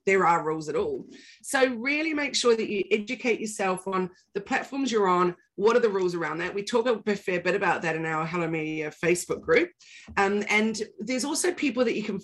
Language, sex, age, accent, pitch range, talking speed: English, female, 30-49, Australian, 180-235 Hz, 220 wpm